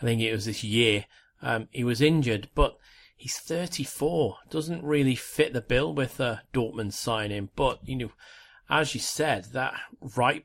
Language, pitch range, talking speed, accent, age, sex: English, 105-135 Hz, 170 wpm, British, 30-49, male